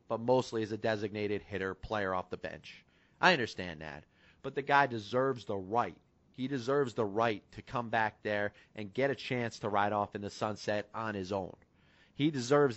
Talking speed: 195 wpm